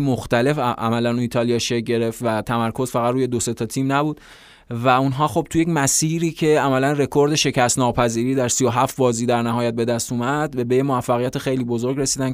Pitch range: 120-140 Hz